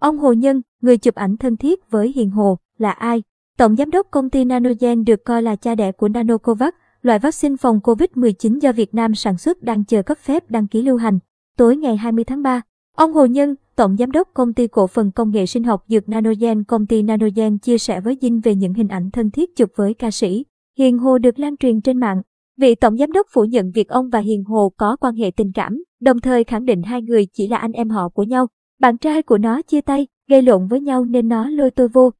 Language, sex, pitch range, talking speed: Vietnamese, male, 220-260 Hz, 245 wpm